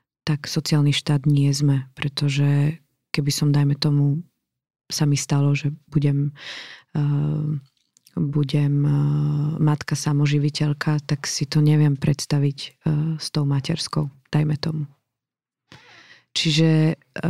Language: Slovak